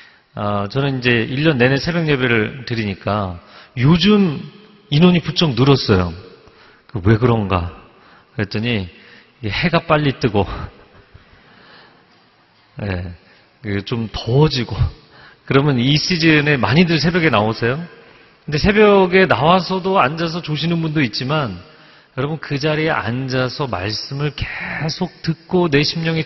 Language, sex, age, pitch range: Korean, male, 40-59, 115-165 Hz